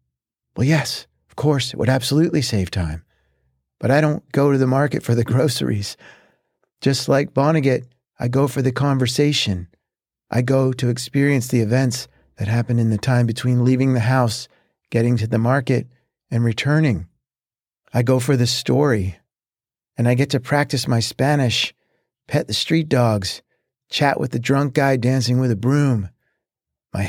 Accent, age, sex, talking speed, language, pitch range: American, 50-69, male, 165 wpm, English, 120-140 Hz